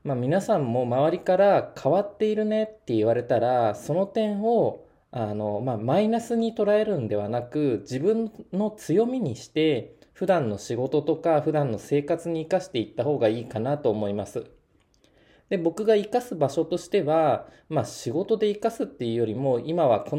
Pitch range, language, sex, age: 130-180 Hz, Japanese, male, 20-39